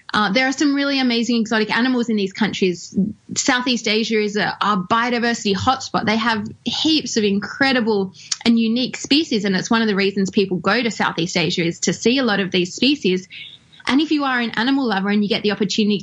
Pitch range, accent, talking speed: 200-245 Hz, Australian, 215 wpm